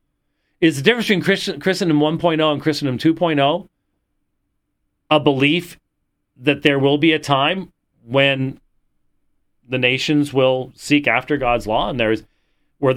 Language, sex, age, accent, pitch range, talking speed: English, male, 40-59, American, 130-180 Hz, 135 wpm